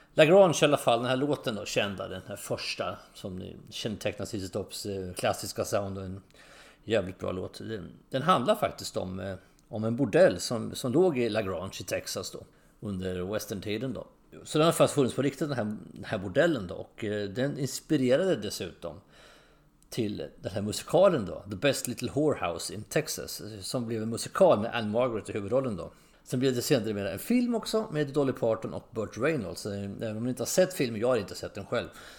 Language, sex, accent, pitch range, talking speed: English, male, Swedish, 100-140 Hz, 195 wpm